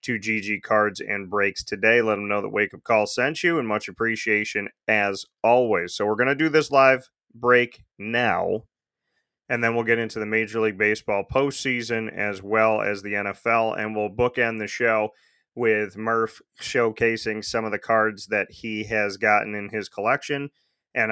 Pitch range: 105-115 Hz